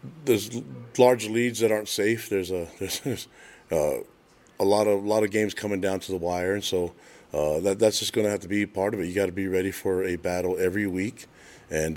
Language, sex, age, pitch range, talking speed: English, male, 40-59, 90-105 Hz, 240 wpm